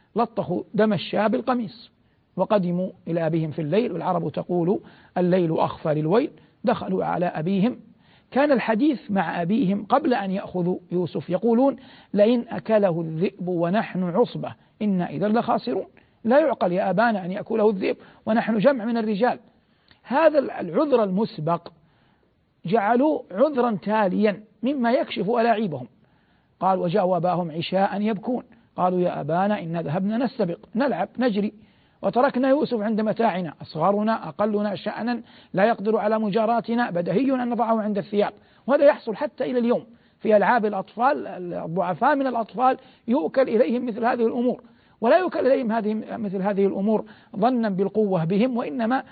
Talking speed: 135 wpm